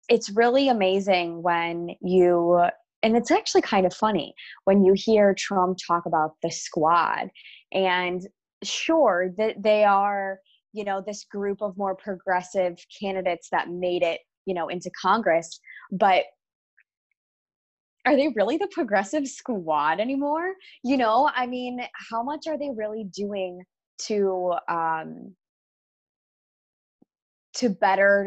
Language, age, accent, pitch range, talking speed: English, 20-39, American, 180-230 Hz, 130 wpm